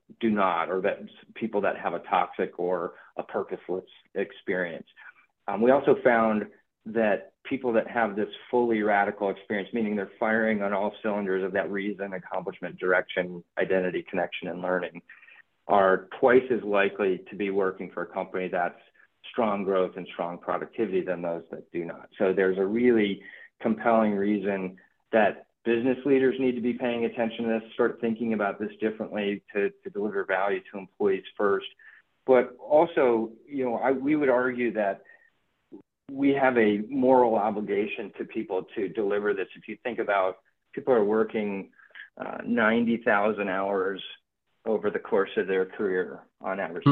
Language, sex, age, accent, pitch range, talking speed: English, male, 40-59, American, 100-125 Hz, 160 wpm